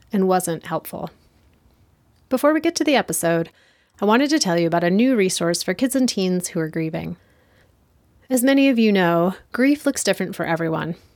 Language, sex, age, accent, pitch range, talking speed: English, female, 30-49, American, 170-230 Hz, 190 wpm